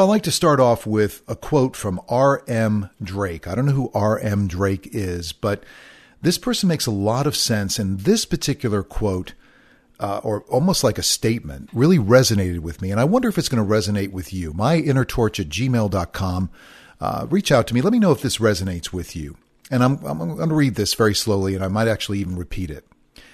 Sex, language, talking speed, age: male, English, 210 wpm, 50-69